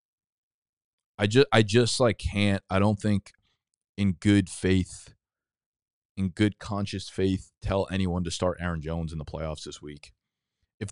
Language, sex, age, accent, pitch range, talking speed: English, male, 20-39, American, 85-110 Hz, 155 wpm